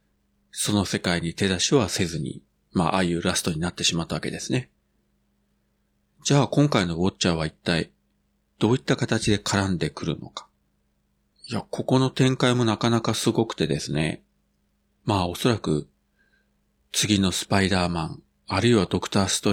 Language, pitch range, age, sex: Japanese, 70-110 Hz, 40-59, male